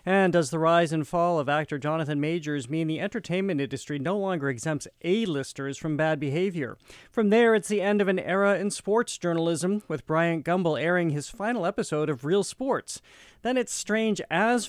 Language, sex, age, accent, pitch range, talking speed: English, male, 40-59, American, 140-175 Hz, 190 wpm